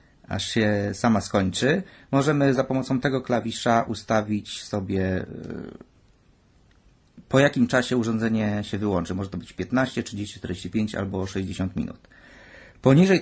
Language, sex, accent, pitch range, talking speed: Polish, male, native, 105-125 Hz, 125 wpm